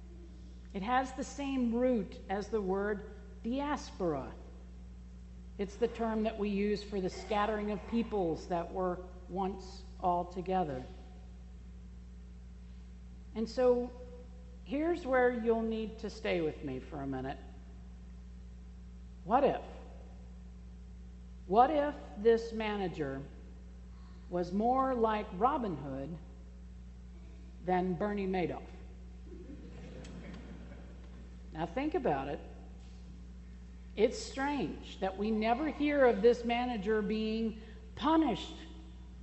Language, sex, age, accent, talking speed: English, female, 50-69, American, 100 wpm